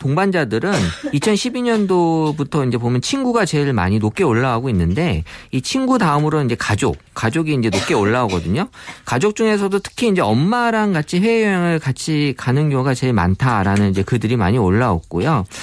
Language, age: Korean, 40-59